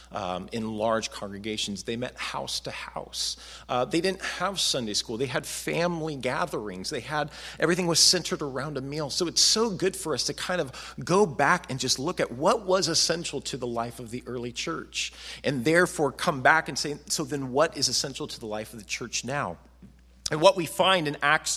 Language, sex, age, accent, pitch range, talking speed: English, male, 40-59, American, 120-170 Hz, 215 wpm